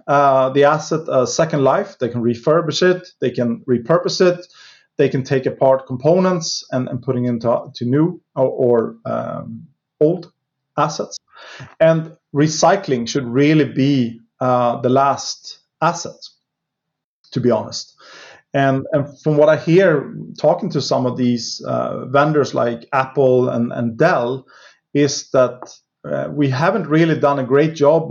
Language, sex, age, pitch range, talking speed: English, male, 30-49, 130-155 Hz, 150 wpm